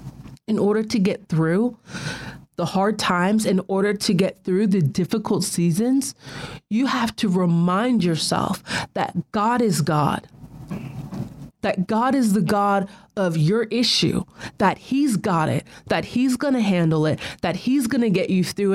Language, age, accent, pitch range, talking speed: English, 30-49, American, 175-220 Hz, 160 wpm